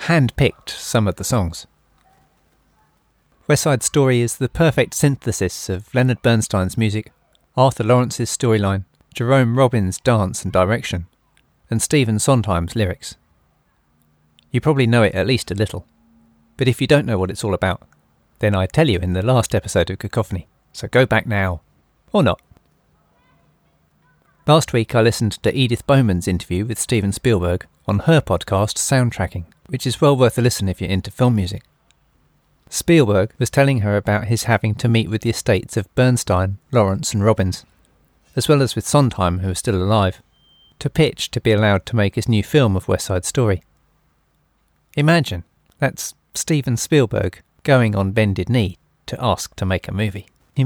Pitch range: 95-125 Hz